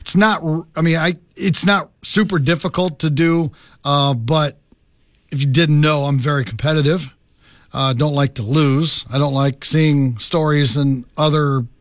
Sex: male